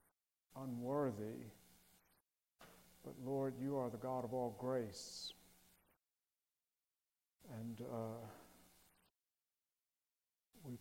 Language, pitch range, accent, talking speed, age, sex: English, 120-145 Hz, American, 70 wpm, 50-69, male